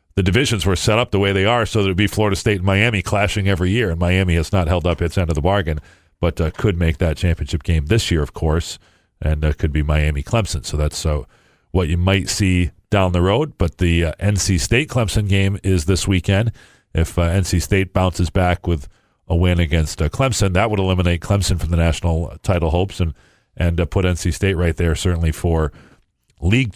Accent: American